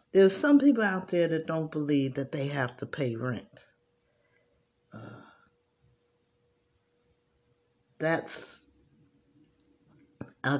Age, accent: 50-69, American